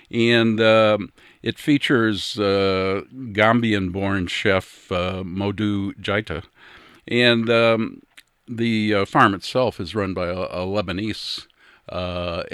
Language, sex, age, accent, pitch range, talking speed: English, male, 50-69, American, 90-110 Hz, 110 wpm